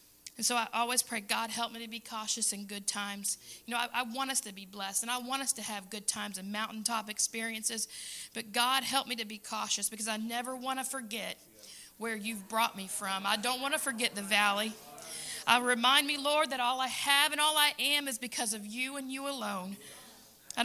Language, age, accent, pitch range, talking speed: English, 40-59, American, 210-245 Hz, 230 wpm